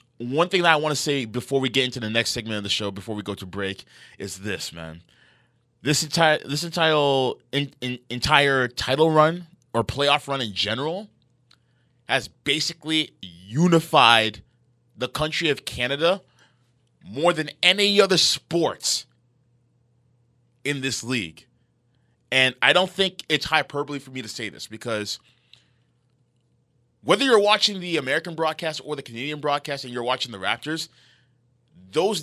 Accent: American